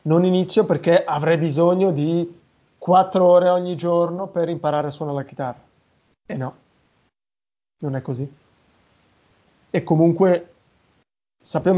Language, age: Italian, 30-49